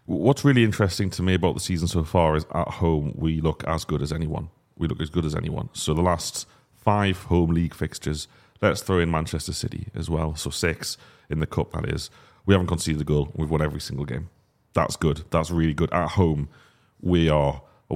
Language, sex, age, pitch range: English, male, 30-49, 80-95 Hz